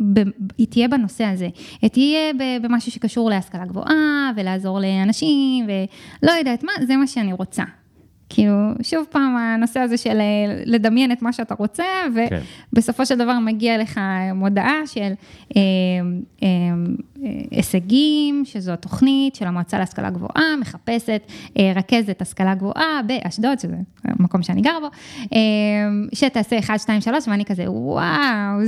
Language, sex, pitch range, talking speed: Hebrew, female, 195-250 Hz, 130 wpm